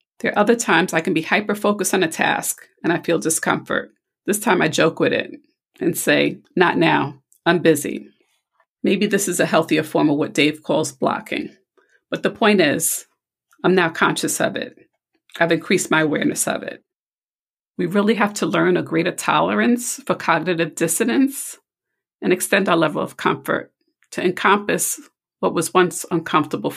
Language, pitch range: English, 165-215 Hz